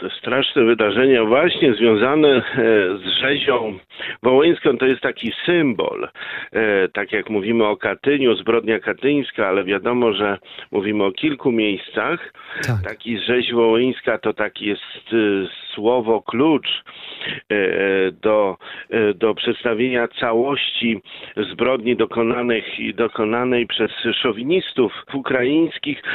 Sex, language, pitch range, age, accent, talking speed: male, Polish, 110-130 Hz, 50-69, native, 100 wpm